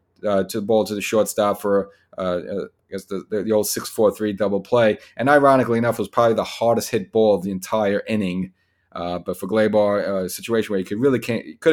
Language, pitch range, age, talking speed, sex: English, 95-115 Hz, 30-49, 230 wpm, male